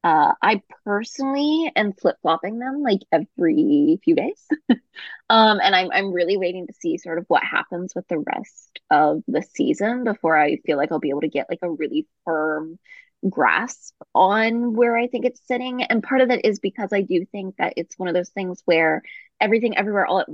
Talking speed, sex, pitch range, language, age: 200 wpm, female, 180-245 Hz, English, 20-39